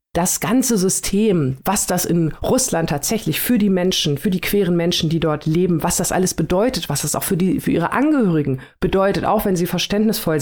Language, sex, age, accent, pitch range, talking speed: German, female, 40-59, German, 165-205 Hz, 200 wpm